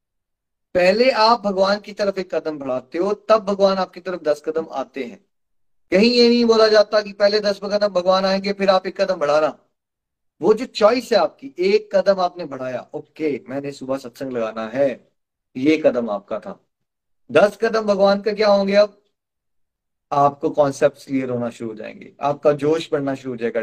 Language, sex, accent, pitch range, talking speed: Hindi, male, native, 145-210 Hz, 185 wpm